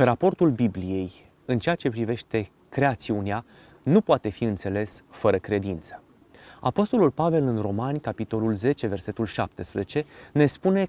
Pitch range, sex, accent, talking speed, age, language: 115-150 Hz, male, native, 125 wpm, 30-49, Romanian